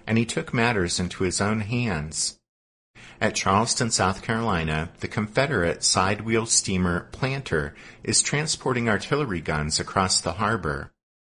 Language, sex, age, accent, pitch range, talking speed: English, male, 50-69, American, 90-125 Hz, 130 wpm